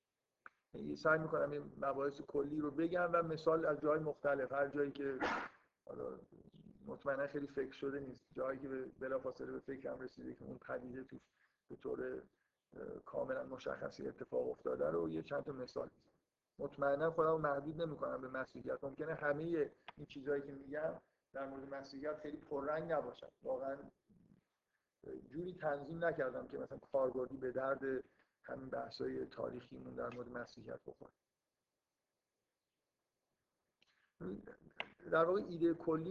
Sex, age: male, 50-69